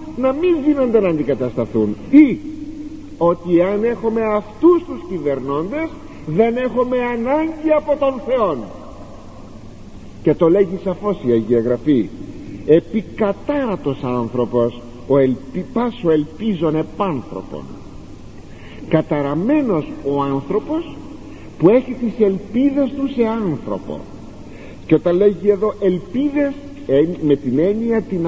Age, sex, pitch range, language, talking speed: 50-69, male, 140-230 Hz, Greek, 105 wpm